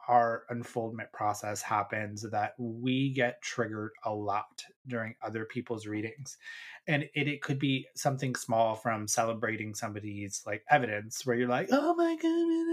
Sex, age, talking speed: male, 30-49, 150 wpm